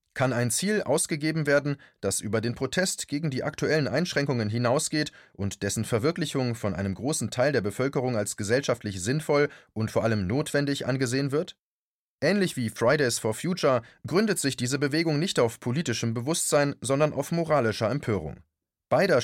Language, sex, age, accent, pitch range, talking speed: German, male, 30-49, German, 115-150 Hz, 155 wpm